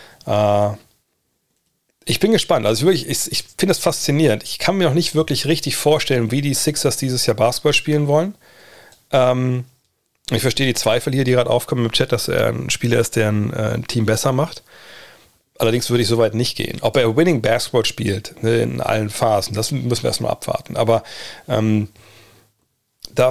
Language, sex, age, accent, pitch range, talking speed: German, male, 30-49, German, 105-125 Hz, 185 wpm